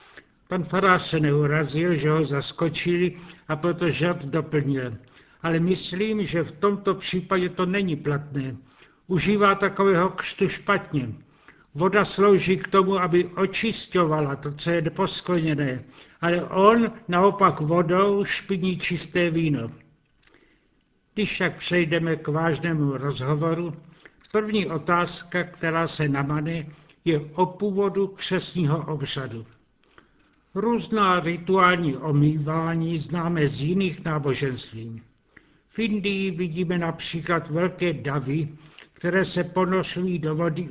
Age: 70-89